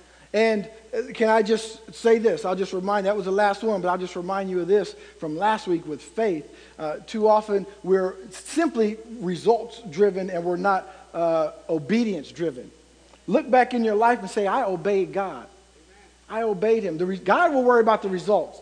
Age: 50-69